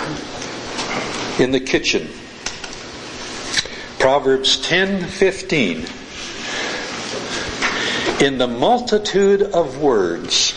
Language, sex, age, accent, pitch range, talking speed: English, male, 60-79, American, 140-190 Hz, 55 wpm